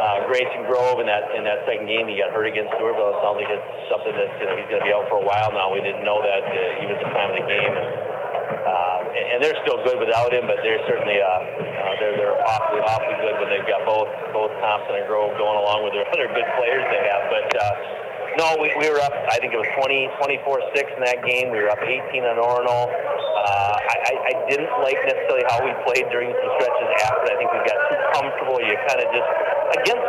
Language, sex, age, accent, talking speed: English, male, 40-59, American, 240 wpm